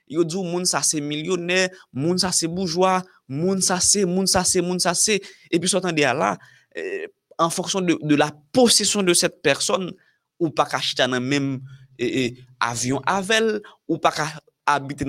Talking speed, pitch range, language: 205 wpm, 130-180 Hz, French